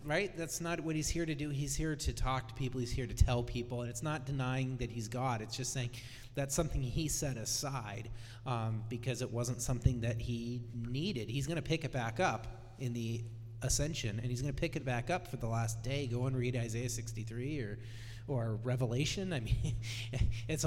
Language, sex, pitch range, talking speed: English, male, 115-140 Hz, 220 wpm